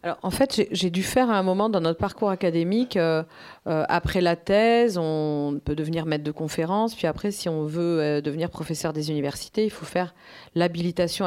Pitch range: 155-215 Hz